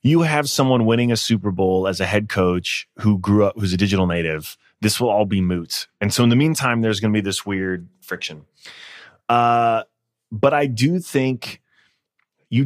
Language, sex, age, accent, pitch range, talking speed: English, male, 30-49, American, 95-115 Hz, 195 wpm